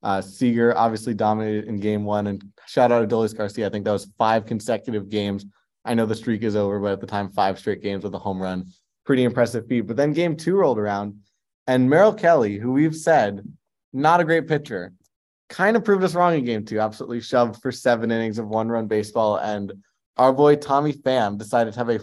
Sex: male